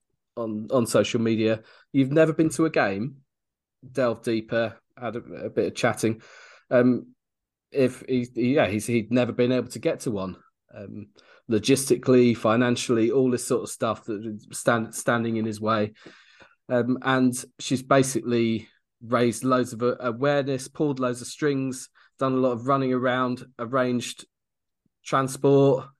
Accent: British